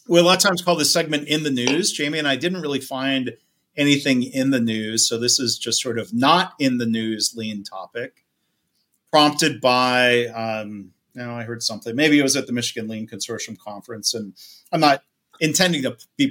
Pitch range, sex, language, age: 115-155 Hz, male, English, 40-59